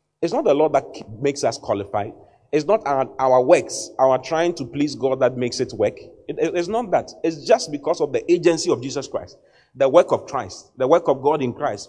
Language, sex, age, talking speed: English, male, 30-49, 230 wpm